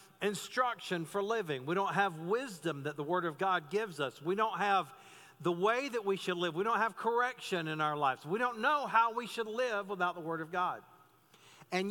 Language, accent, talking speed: English, American, 215 wpm